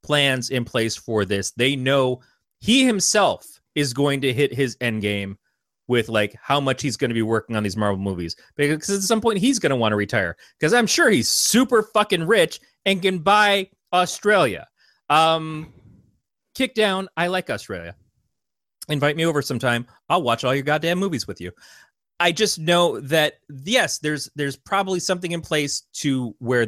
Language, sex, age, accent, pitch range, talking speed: English, male, 30-49, American, 115-160 Hz, 180 wpm